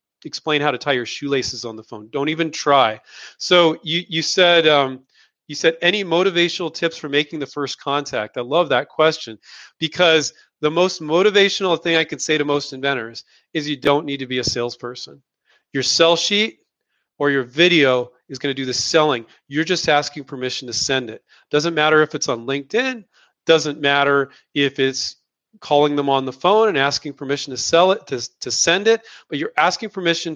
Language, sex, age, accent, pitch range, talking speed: English, male, 40-59, American, 130-160 Hz, 195 wpm